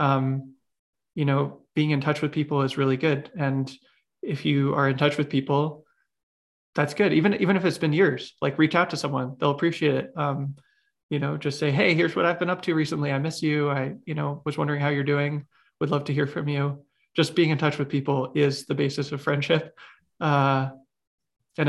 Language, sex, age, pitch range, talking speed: English, male, 20-39, 140-150 Hz, 215 wpm